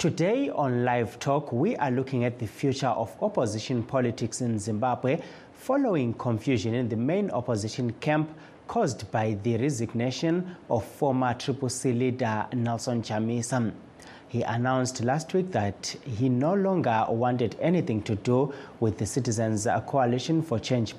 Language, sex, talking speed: English, male, 145 wpm